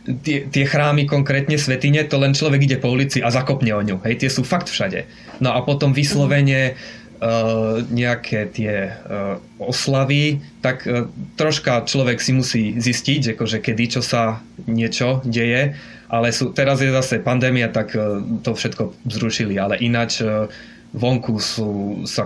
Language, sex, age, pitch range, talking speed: Slovak, male, 20-39, 115-130 Hz, 160 wpm